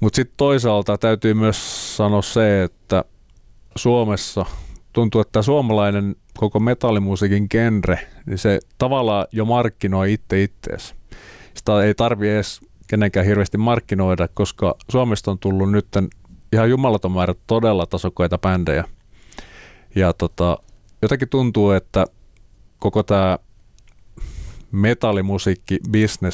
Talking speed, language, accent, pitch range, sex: 110 wpm, Finnish, native, 90-110 Hz, male